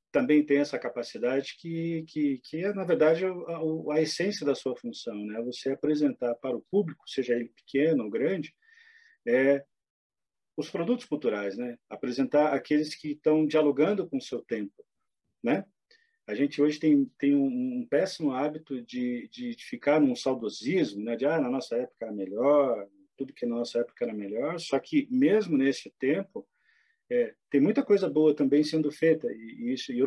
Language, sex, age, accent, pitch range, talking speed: Portuguese, male, 40-59, Brazilian, 130-205 Hz, 180 wpm